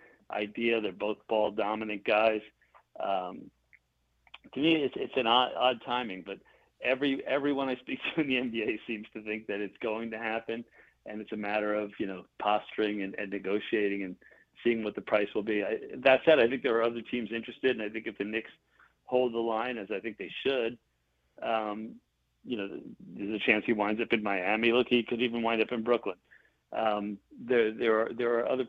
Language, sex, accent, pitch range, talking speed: English, male, American, 105-120 Hz, 205 wpm